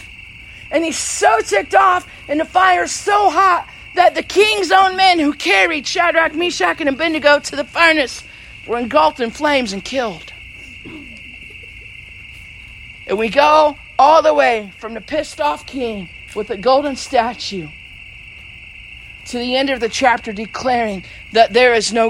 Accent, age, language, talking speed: American, 50-69, English, 155 wpm